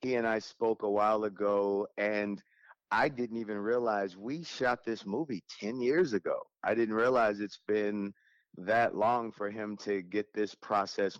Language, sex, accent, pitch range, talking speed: English, male, American, 105-120 Hz, 170 wpm